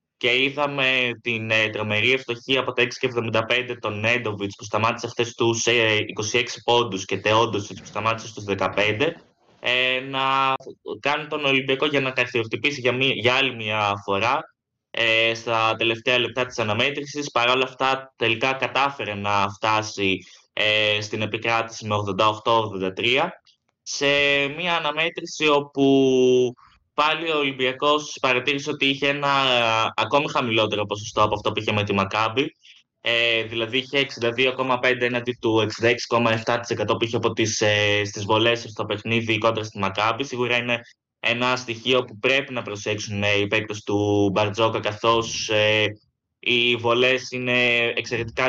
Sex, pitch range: male, 110-130 Hz